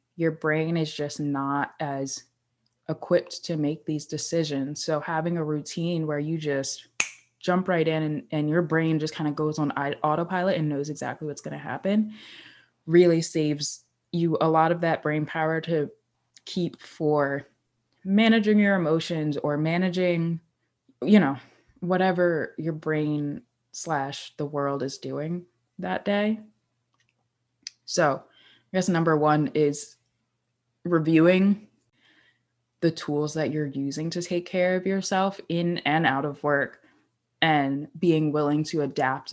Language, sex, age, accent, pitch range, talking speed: English, female, 20-39, American, 145-175 Hz, 145 wpm